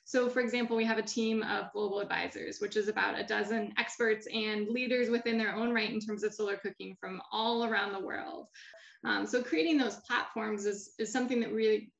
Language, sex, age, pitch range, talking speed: English, female, 10-29, 210-240 Hz, 215 wpm